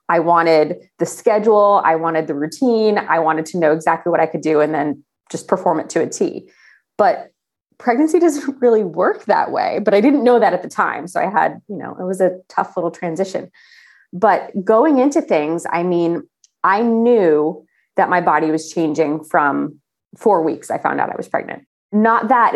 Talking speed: 200 wpm